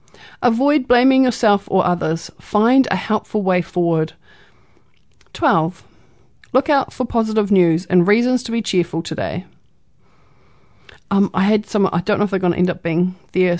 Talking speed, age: 165 wpm, 40-59